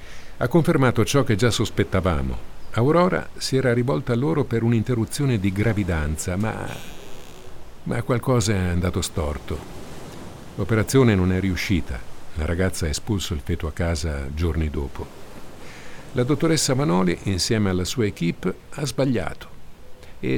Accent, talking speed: native, 135 wpm